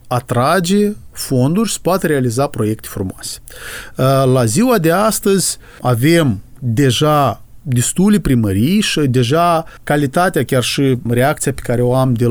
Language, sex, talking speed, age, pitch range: Romanian, male, 135 wpm, 40-59, 130-200 Hz